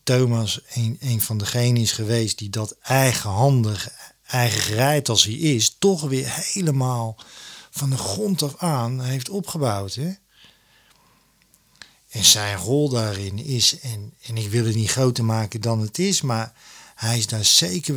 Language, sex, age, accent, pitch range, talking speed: Dutch, male, 50-69, Dutch, 110-140 Hz, 155 wpm